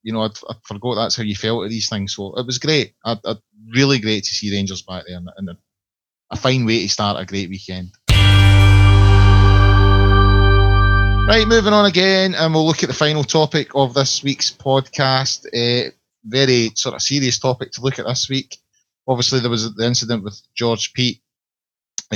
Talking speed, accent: 190 wpm, British